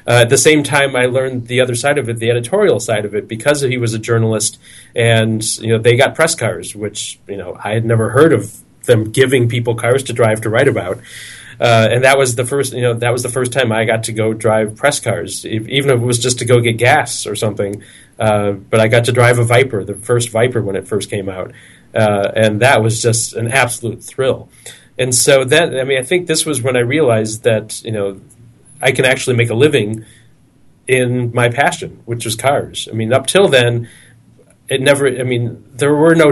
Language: English